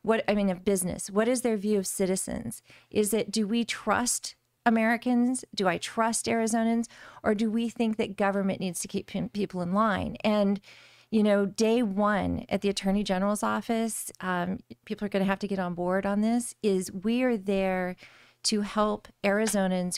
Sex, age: female, 40-59